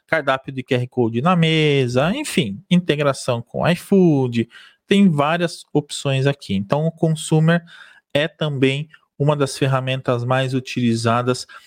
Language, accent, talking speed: Portuguese, Brazilian, 125 wpm